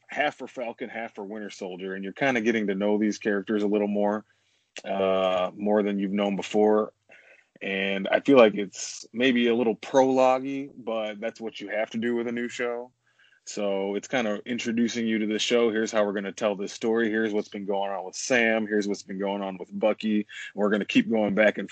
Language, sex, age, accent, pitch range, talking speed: English, male, 20-39, American, 100-115 Hz, 230 wpm